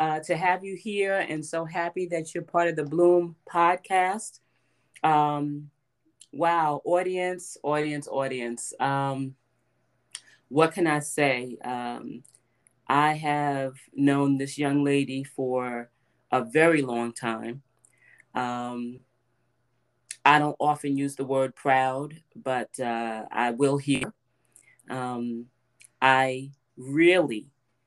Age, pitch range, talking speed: 30-49, 130-150 Hz, 115 wpm